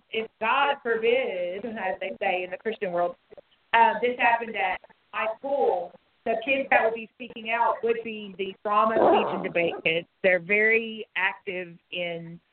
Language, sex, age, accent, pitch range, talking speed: English, female, 30-49, American, 195-235 Hz, 170 wpm